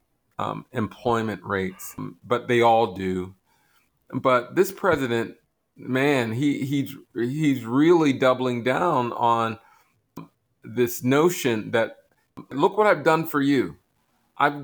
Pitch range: 120-145 Hz